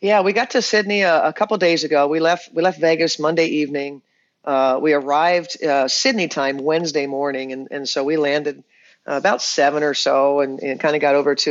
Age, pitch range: 40-59, 135-165 Hz